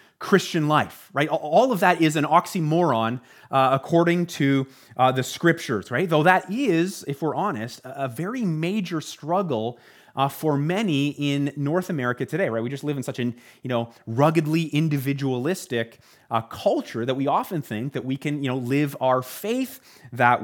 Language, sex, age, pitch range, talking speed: English, male, 30-49, 130-165 Hz, 175 wpm